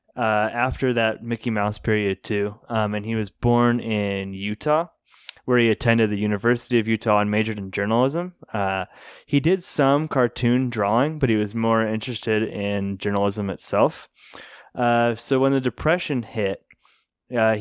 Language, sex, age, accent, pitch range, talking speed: English, male, 20-39, American, 105-125 Hz, 155 wpm